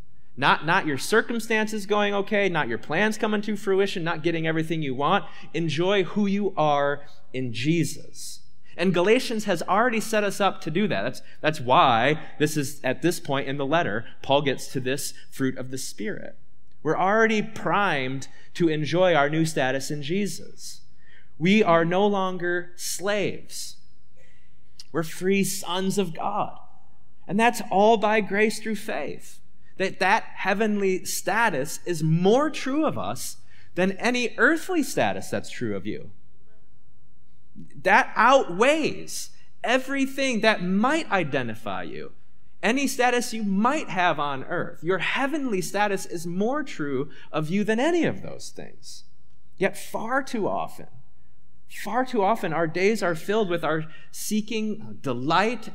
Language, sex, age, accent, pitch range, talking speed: English, male, 30-49, American, 155-215 Hz, 150 wpm